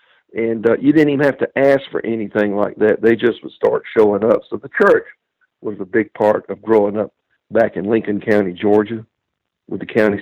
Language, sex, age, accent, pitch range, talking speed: English, male, 50-69, American, 110-140 Hz, 210 wpm